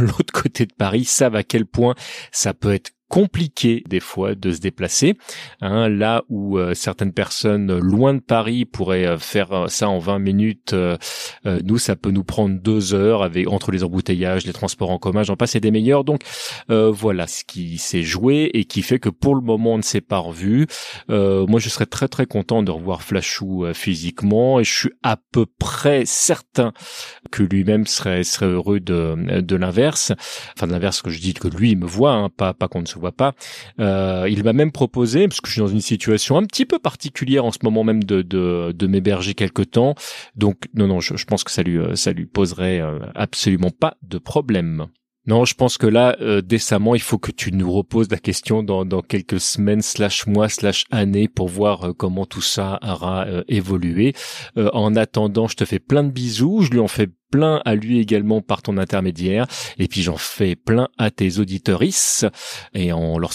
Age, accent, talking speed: 30-49, French, 215 wpm